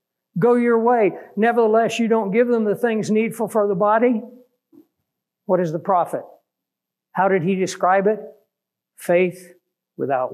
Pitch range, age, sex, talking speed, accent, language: 170-210 Hz, 60-79, male, 145 wpm, American, English